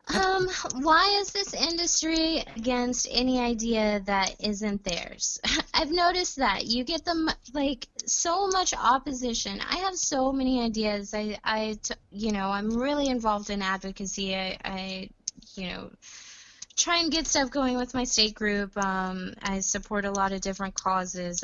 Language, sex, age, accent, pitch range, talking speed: English, female, 20-39, American, 180-230 Hz, 160 wpm